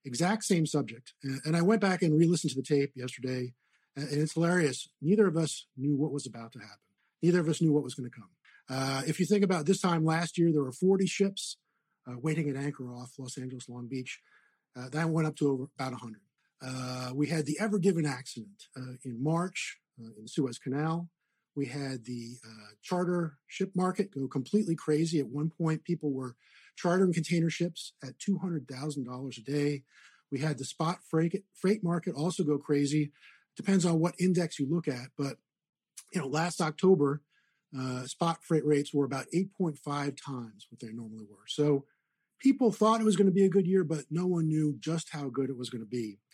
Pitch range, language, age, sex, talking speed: 130-175 Hz, English, 50-69, male, 200 wpm